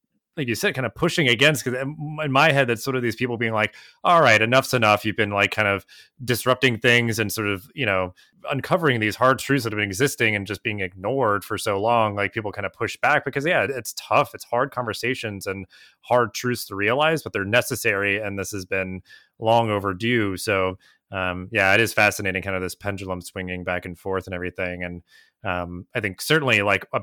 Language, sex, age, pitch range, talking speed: English, male, 30-49, 100-125 Hz, 220 wpm